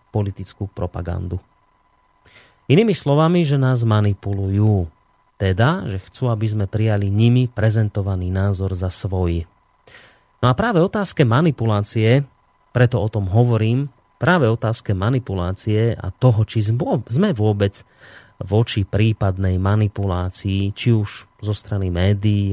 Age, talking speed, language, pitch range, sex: 30-49, 115 wpm, Slovak, 95-120 Hz, male